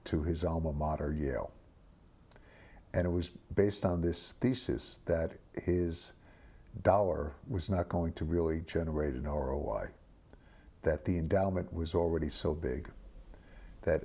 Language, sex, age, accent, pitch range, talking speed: English, male, 60-79, American, 80-95 Hz, 130 wpm